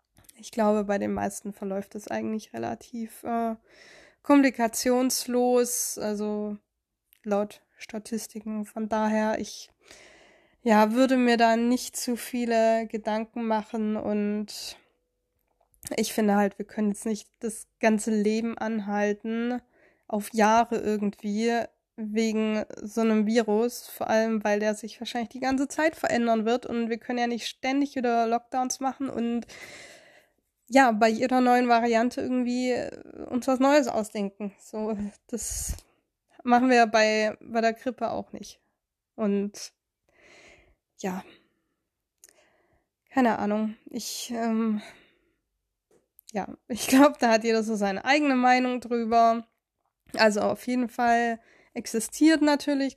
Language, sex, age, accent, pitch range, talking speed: German, female, 20-39, German, 215-250 Hz, 125 wpm